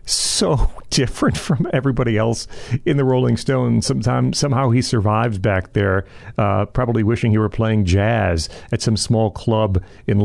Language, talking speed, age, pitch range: English, 160 wpm, 40-59, 105-135 Hz